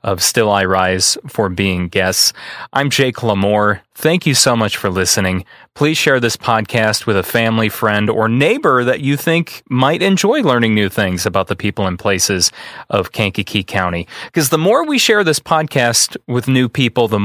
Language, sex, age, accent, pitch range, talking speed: English, male, 30-49, American, 105-135 Hz, 185 wpm